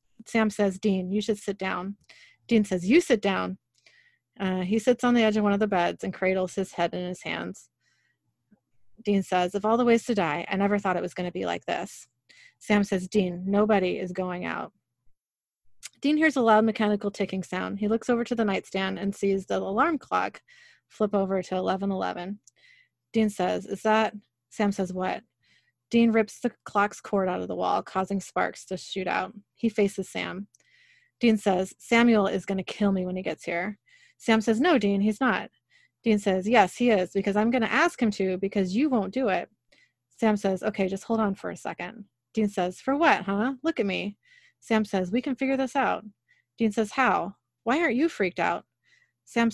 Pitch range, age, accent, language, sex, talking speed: 190-235 Hz, 30-49, American, English, female, 205 wpm